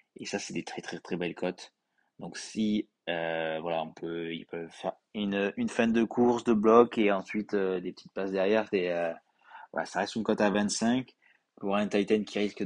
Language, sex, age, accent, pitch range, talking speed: French, male, 20-39, French, 85-105 Hz, 220 wpm